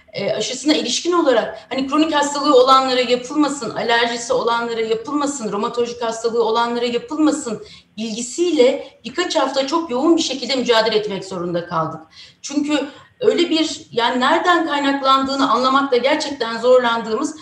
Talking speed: 125 wpm